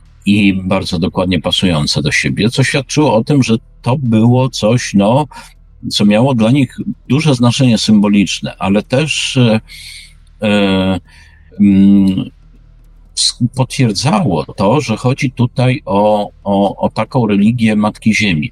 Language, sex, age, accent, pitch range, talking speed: Polish, male, 50-69, native, 90-130 Hz, 125 wpm